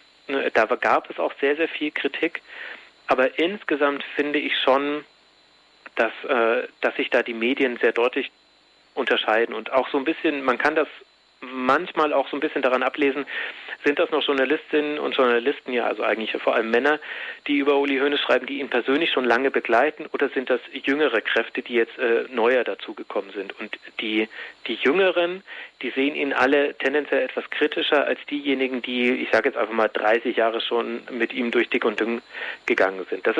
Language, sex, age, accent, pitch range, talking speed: German, male, 40-59, German, 125-150 Hz, 185 wpm